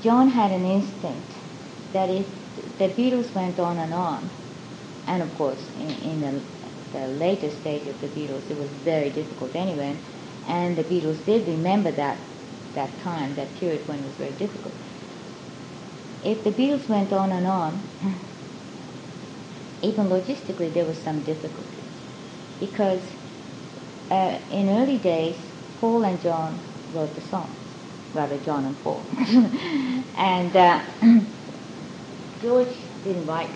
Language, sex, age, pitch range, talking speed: English, female, 30-49, 155-205 Hz, 140 wpm